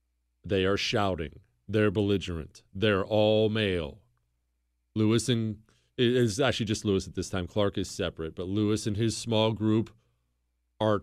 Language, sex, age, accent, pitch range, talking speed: English, male, 40-59, American, 90-145 Hz, 145 wpm